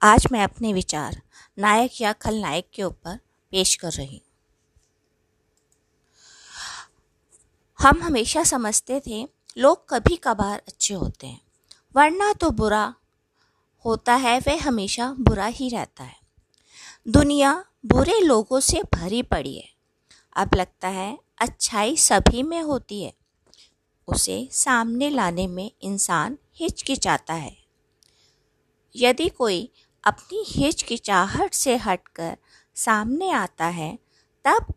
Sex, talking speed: female, 115 wpm